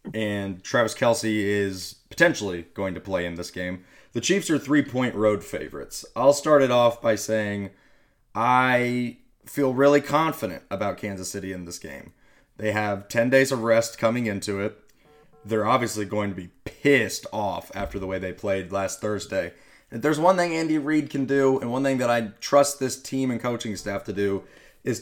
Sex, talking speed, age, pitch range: male, 185 wpm, 30-49, 100-125 Hz